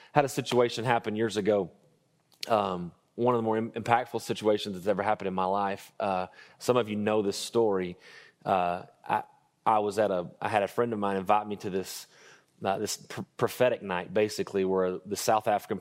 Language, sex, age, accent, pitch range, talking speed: English, male, 30-49, American, 100-115 Hz, 195 wpm